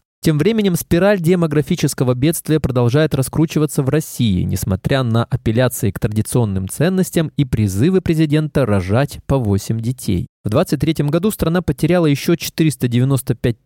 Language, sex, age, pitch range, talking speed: Russian, male, 20-39, 110-160 Hz, 125 wpm